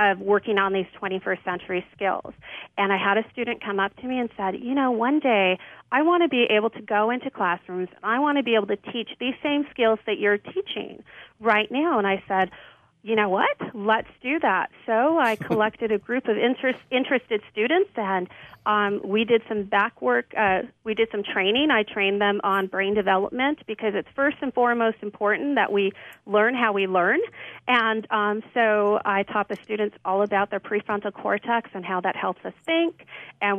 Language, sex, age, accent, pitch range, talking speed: English, female, 40-59, American, 200-250 Hz, 205 wpm